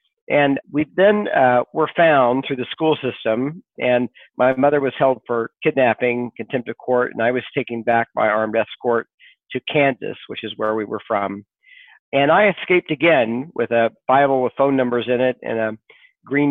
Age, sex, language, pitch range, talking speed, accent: 50-69, male, English, 120-145 Hz, 185 wpm, American